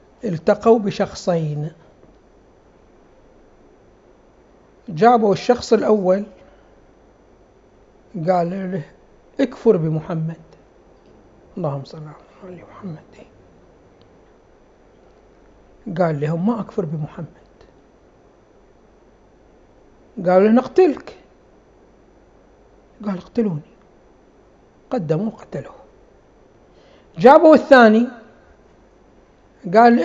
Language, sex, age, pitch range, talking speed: Arabic, male, 60-79, 185-260 Hz, 55 wpm